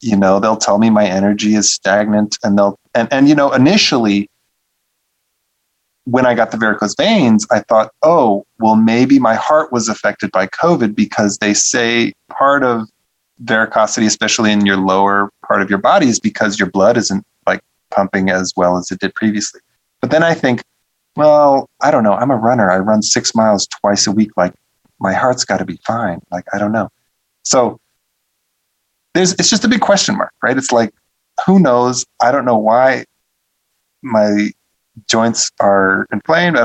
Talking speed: 180 wpm